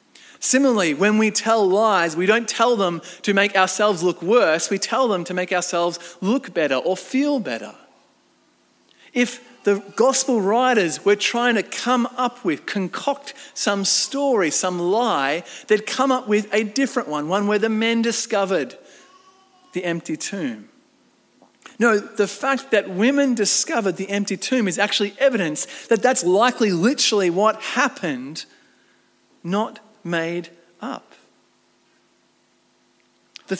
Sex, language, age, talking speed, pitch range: male, English, 40-59, 140 wpm, 195-250 Hz